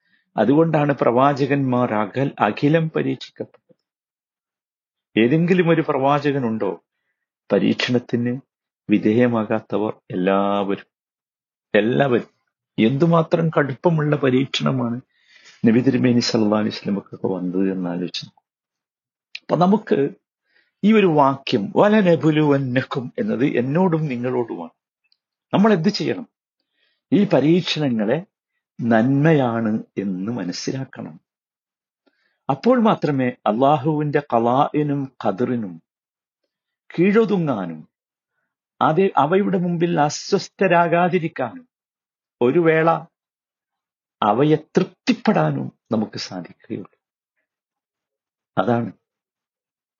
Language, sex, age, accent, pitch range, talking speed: Malayalam, male, 50-69, native, 120-170 Hz, 60 wpm